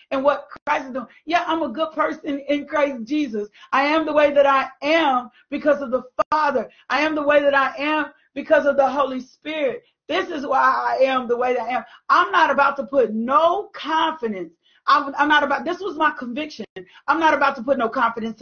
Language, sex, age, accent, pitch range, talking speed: English, female, 40-59, American, 250-300 Hz, 220 wpm